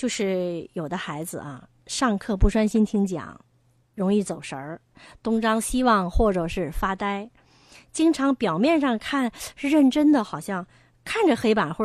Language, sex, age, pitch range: Chinese, female, 20-39, 175-245 Hz